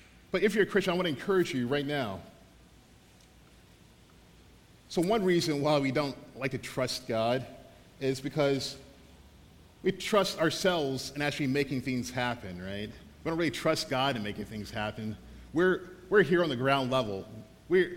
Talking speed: 165 wpm